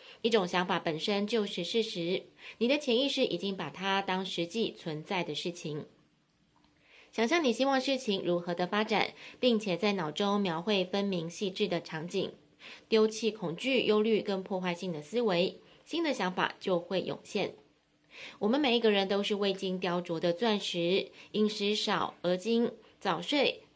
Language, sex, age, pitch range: Chinese, female, 20-39, 180-225 Hz